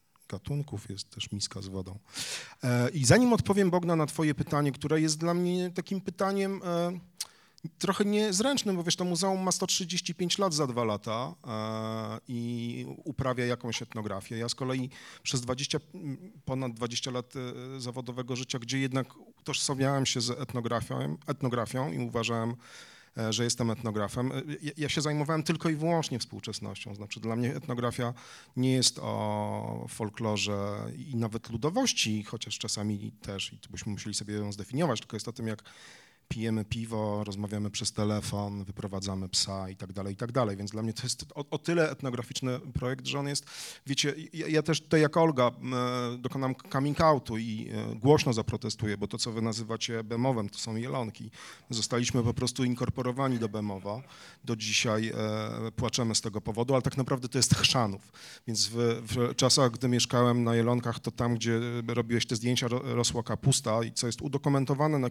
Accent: native